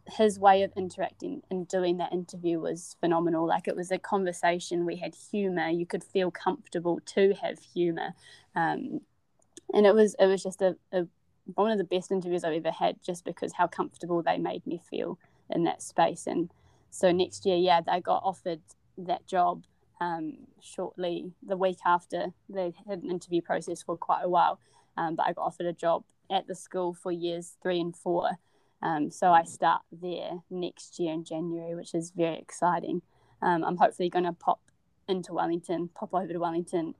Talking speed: 190 wpm